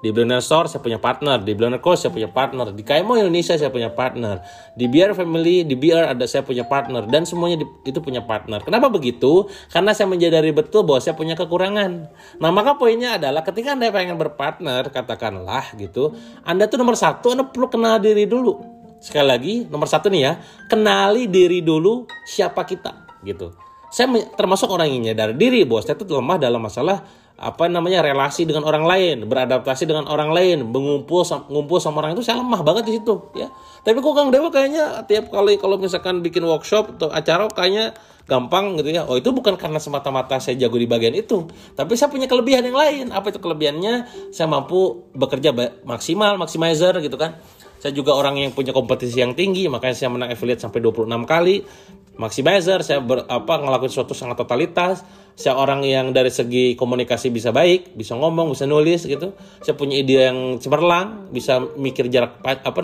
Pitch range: 130-195 Hz